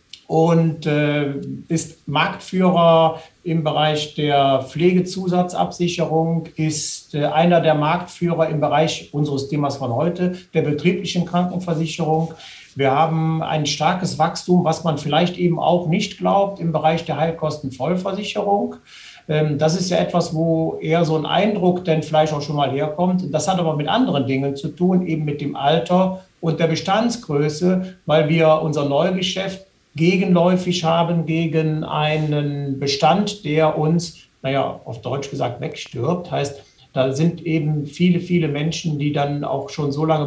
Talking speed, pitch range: 145 wpm, 145-170 Hz